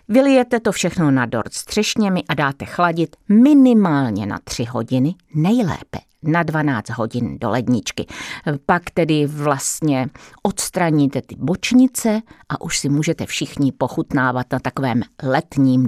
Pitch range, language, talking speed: 135-175 Hz, Czech, 130 wpm